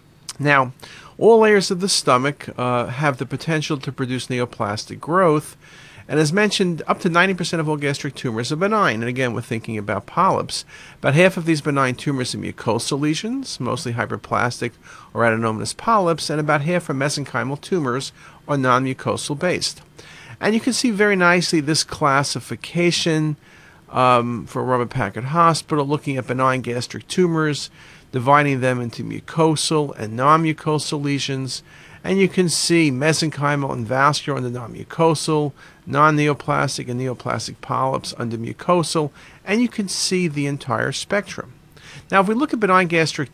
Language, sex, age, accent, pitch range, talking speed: English, male, 50-69, American, 130-165 Hz, 155 wpm